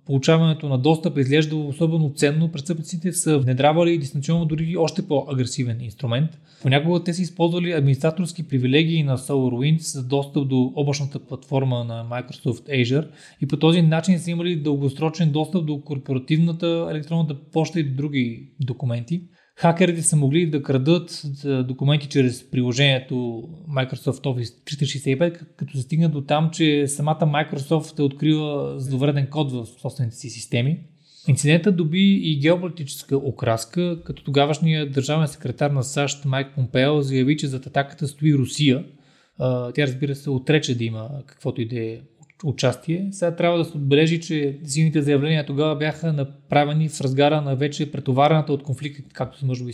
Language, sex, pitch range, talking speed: Bulgarian, male, 135-155 Hz, 150 wpm